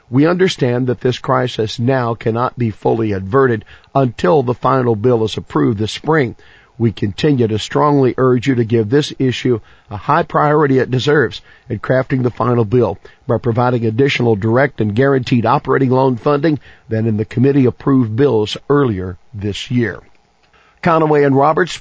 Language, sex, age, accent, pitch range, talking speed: English, male, 50-69, American, 115-140 Hz, 160 wpm